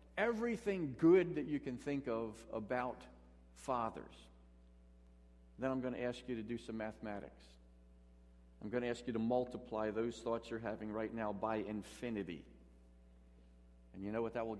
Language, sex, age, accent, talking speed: English, male, 50-69, American, 165 wpm